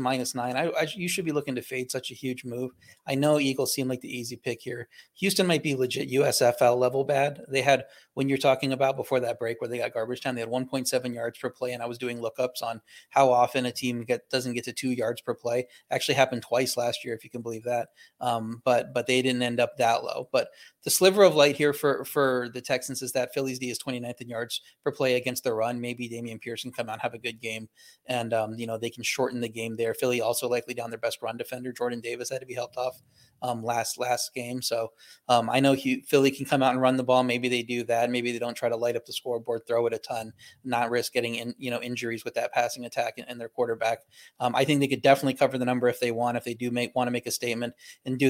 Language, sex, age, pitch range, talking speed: English, male, 30-49, 120-130 Hz, 270 wpm